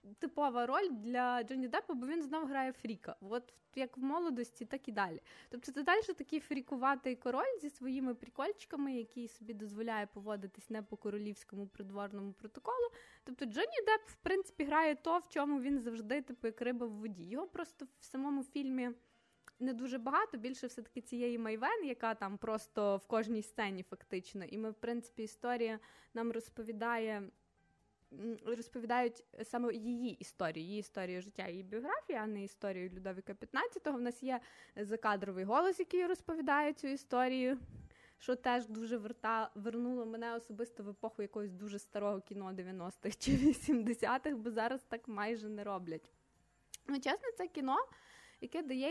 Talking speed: 155 wpm